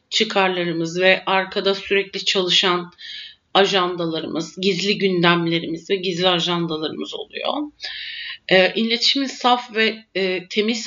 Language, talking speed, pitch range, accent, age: Turkish, 90 wpm, 185-225 Hz, native, 50-69